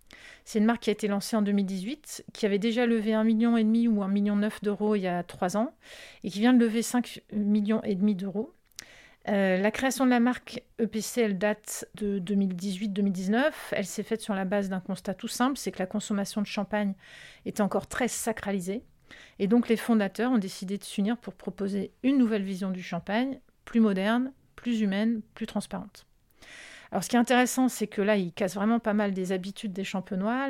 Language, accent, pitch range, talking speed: French, French, 195-230 Hz, 200 wpm